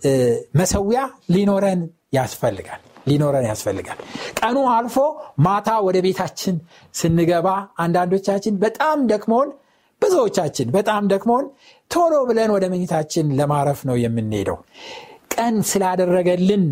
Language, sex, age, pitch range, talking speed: Amharic, male, 60-79, 145-205 Hz, 95 wpm